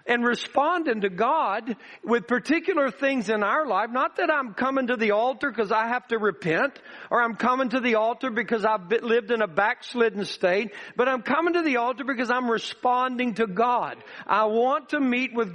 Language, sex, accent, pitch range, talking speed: English, male, American, 225-285 Hz, 195 wpm